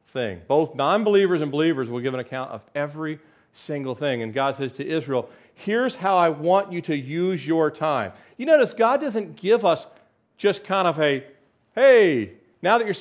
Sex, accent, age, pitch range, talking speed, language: male, American, 40-59, 125-190 Hz, 185 wpm, English